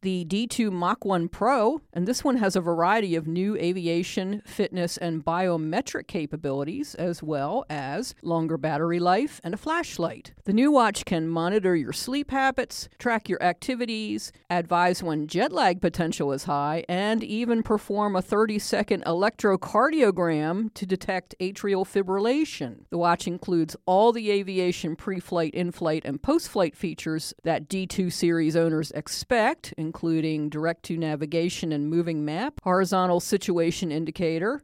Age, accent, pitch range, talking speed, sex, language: 50-69, American, 165-210 Hz, 140 wpm, female, English